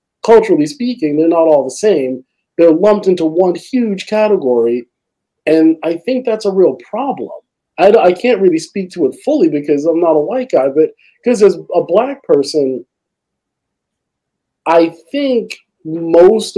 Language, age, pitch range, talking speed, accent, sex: English, 40-59, 145-215 Hz, 155 wpm, American, male